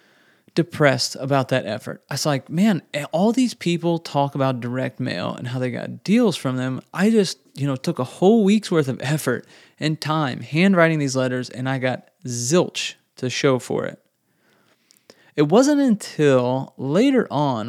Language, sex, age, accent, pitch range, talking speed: English, male, 20-39, American, 130-170 Hz, 175 wpm